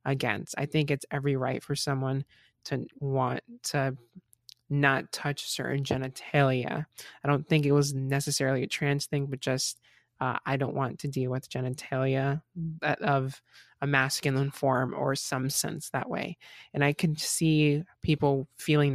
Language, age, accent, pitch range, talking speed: English, 20-39, American, 130-145 Hz, 155 wpm